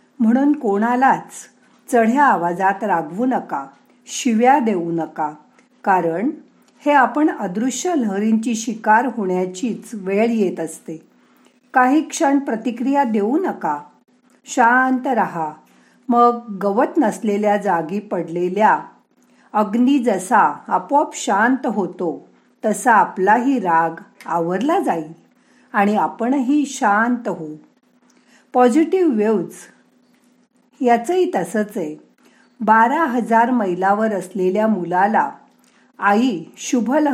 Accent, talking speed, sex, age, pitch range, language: native, 85 wpm, female, 50-69, 195-255 Hz, Marathi